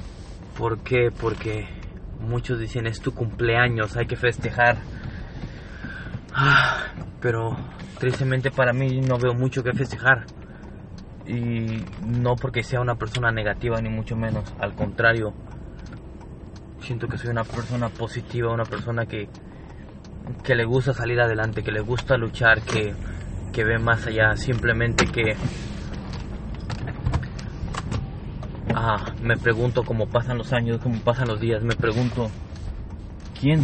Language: English